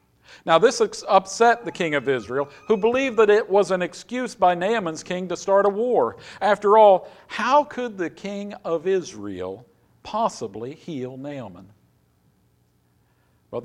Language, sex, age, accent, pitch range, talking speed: English, male, 50-69, American, 120-185 Hz, 145 wpm